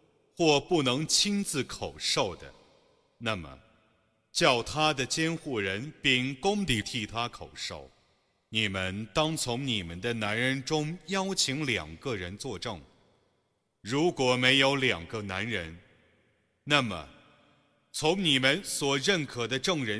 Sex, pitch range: male, 105-155 Hz